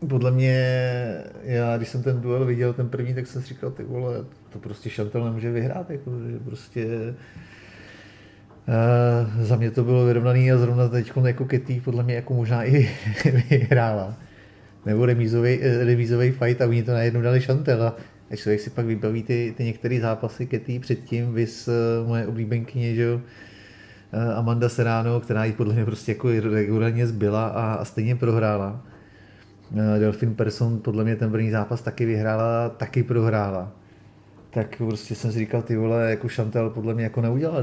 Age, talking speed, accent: 30-49, 175 wpm, native